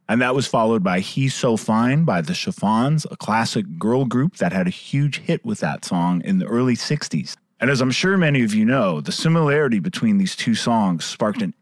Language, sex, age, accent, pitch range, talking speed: English, male, 30-49, American, 125-190 Hz, 220 wpm